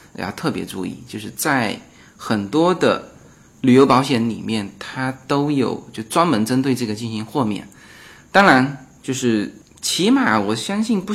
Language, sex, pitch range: Chinese, male, 110-155 Hz